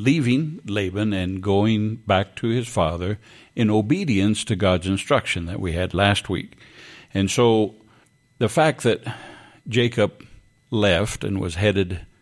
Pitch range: 90-115 Hz